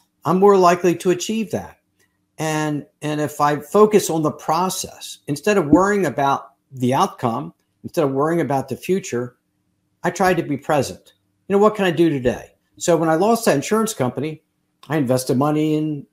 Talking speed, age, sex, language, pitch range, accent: 180 wpm, 50-69, male, English, 125-170 Hz, American